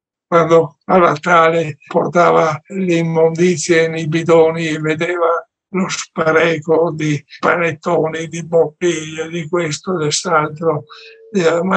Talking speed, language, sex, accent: 110 wpm, Italian, male, native